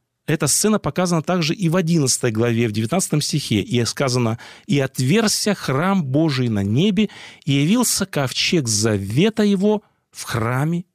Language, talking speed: Russian, 140 wpm